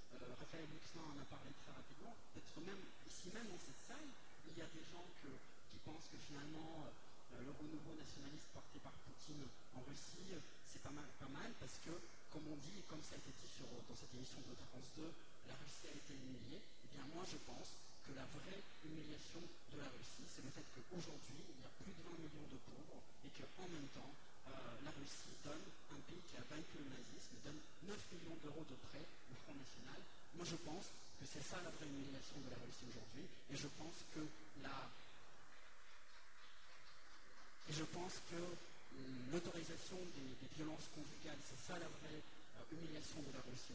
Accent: French